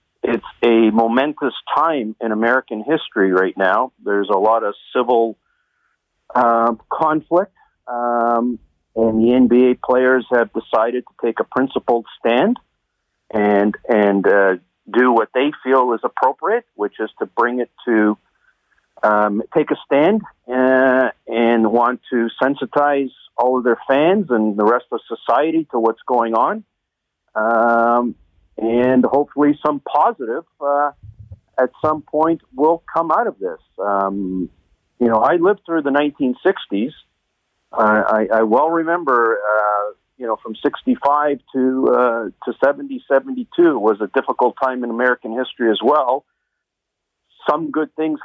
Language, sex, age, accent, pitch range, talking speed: English, male, 50-69, American, 110-145 Hz, 140 wpm